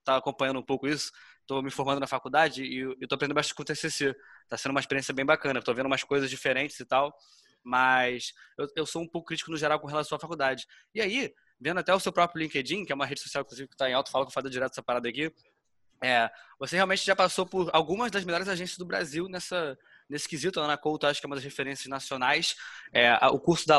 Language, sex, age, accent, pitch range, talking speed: Portuguese, male, 20-39, Brazilian, 130-160 Hz, 245 wpm